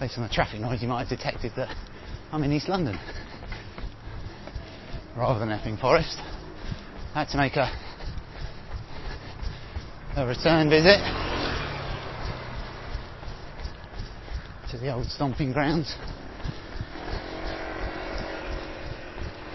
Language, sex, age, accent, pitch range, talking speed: English, male, 30-49, British, 95-140 Hz, 95 wpm